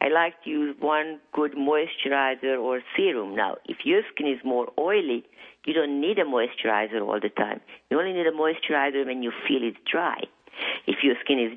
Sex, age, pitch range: female, 50-69, 135-165 Hz